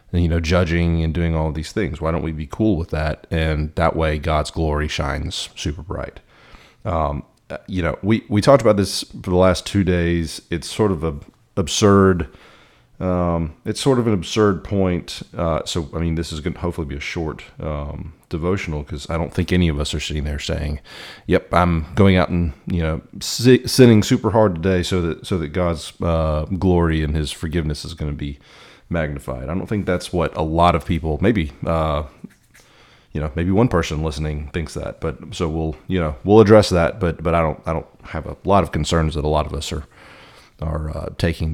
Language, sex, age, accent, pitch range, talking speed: English, male, 40-59, American, 75-95 Hz, 210 wpm